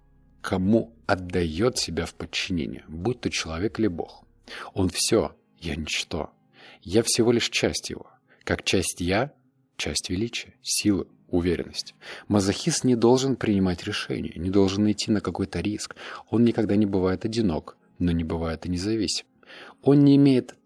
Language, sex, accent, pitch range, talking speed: Russian, male, native, 90-115 Hz, 145 wpm